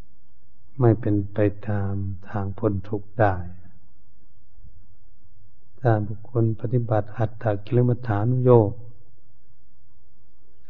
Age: 60-79